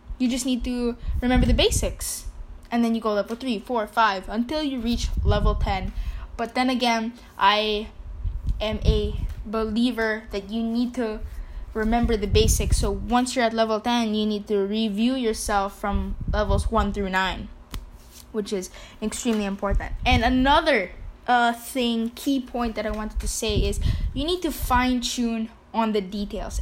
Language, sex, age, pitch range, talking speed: English, female, 10-29, 210-245 Hz, 165 wpm